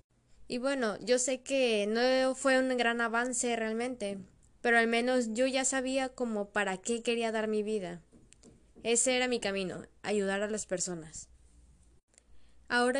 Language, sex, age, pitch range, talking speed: Spanish, female, 10-29, 200-260 Hz, 150 wpm